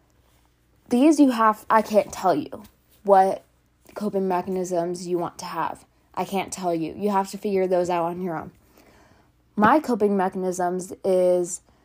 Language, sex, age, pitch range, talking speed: English, female, 20-39, 180-210 Hz, 155 wpm